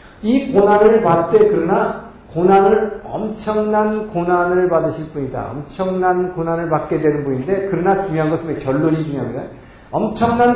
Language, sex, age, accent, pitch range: Korean, male, 50-69, native, 135-190 Hz